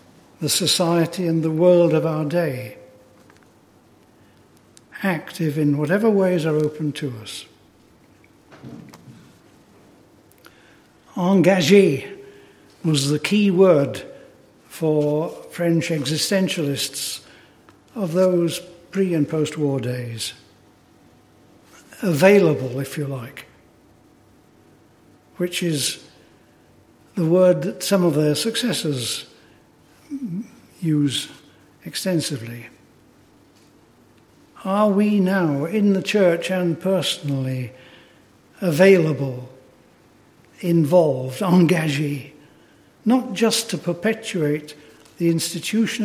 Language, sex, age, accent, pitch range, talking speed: English, male, 60-79, British, 145-185 Hz, 80 wpm